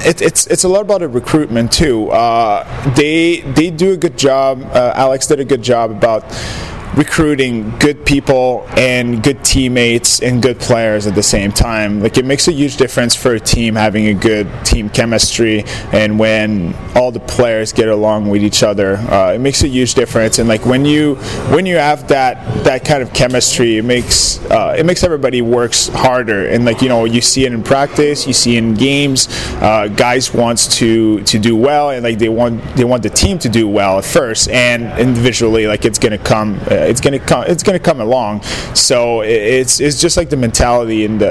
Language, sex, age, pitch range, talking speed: English, male, 20-39, 110-130 Hz, 205 wpm